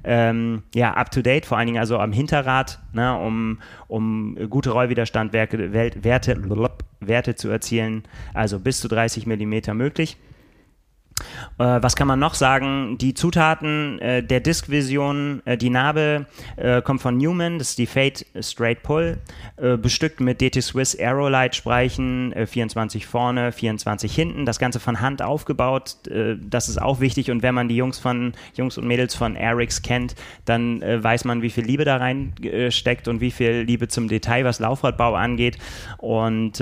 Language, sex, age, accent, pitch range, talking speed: German, male, 30-49, German, 110-130 Hz, 165 wpm